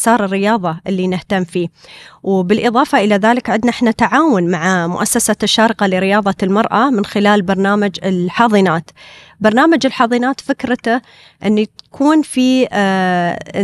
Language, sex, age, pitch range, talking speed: Arabic, female, 30-49, 195-250 Hz, 120 wpm